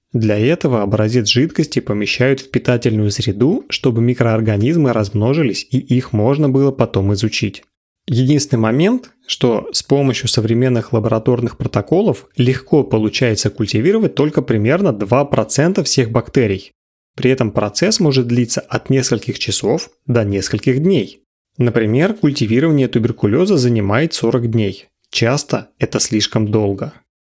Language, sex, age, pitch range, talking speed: Russian, male, 30-49, 110-135 Hz, 120 wpm